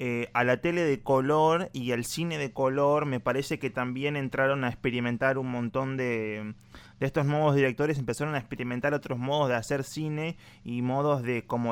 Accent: Argentinian